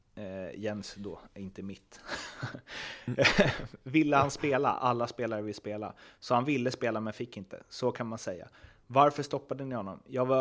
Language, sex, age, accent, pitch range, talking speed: Swedish, male, 30-49, native, 110-135 Hz, 165 wpm